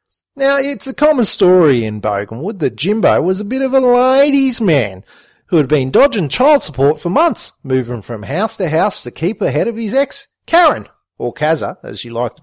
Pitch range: 130-220 Hz